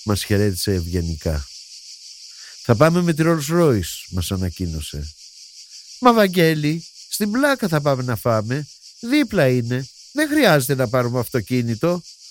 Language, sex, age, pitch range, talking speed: Greek, male, 50-69, 95-140 Hz, 125 wpm